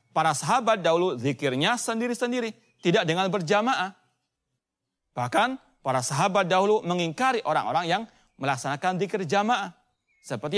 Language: Indonesian